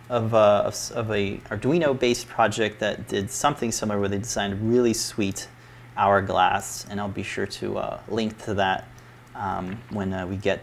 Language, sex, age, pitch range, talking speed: English, male, 30-49, 100-120 Hz, 170 wpm